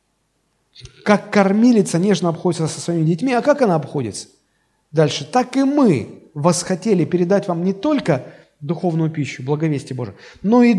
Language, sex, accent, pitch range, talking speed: Russian, male, native, 165-230 Hz, 145 wpm